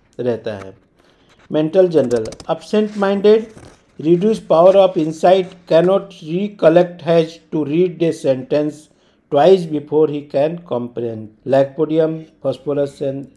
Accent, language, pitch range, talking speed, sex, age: native, Hindi, 145-185 Hz, 100 wpm, male, 50-69